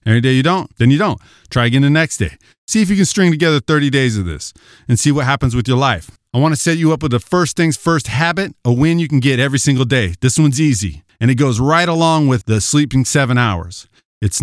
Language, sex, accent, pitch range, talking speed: English, male, American, 125-180 Hz, 260 wpm